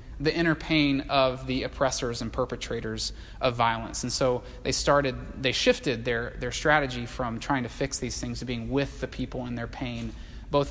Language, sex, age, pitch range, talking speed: English, male, 20-39, 110-145 Hz, 190 wpm